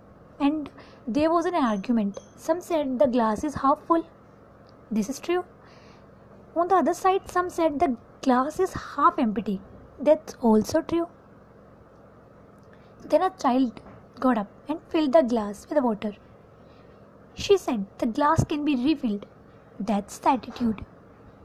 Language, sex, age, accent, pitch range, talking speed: English, female, 20-39, Indian, 240-320 Hz, 140 wpm